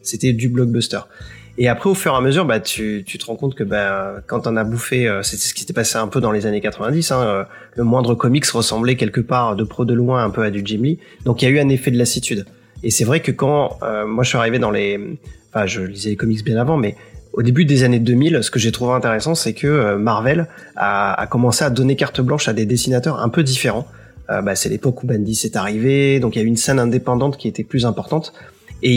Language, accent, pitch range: French, French, 110-140 Hz